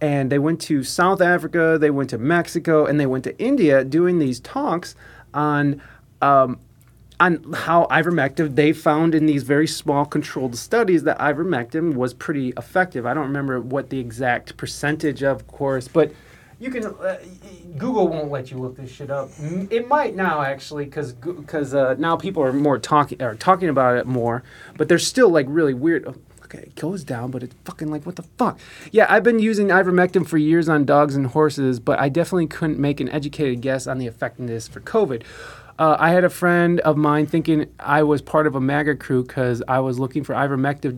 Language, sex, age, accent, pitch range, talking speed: English, male, 30-49, American, 135-170 Hz, 200 wpm